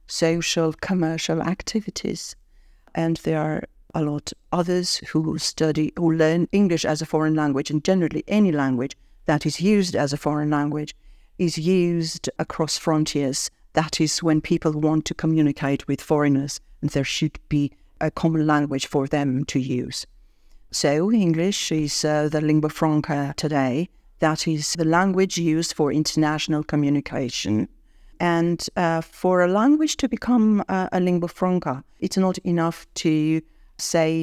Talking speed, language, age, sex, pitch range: 150 wpm, Russian, 50-69, female, 155-175 Hz